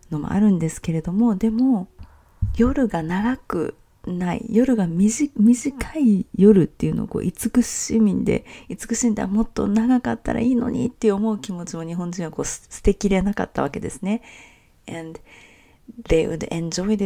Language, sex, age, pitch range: English, female, 40-59, 165-220 Hz